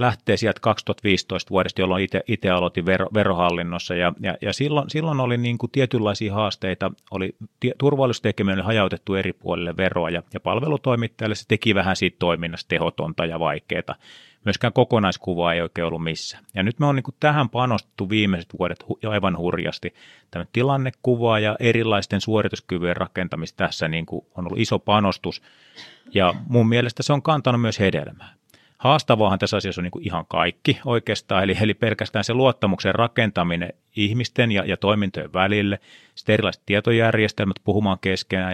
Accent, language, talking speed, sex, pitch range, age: native, Finnish, 150 wpm, male, 95-115 Hz, 30-49